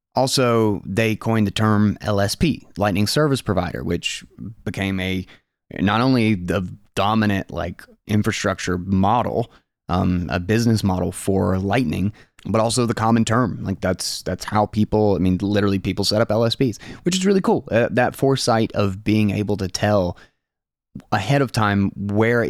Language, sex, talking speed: English, male, 155 wpm